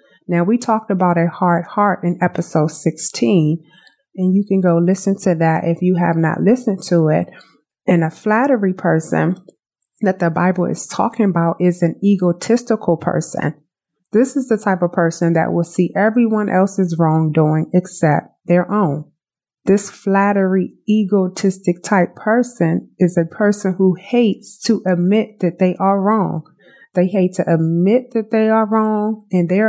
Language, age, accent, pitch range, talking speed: English, 30-49, American, 170-200 Hz, 160 wpm